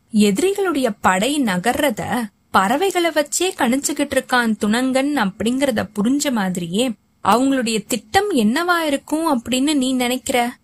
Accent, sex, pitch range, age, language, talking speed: native, female, 205-280 Hz, 20-39, Tamil, 100 wpm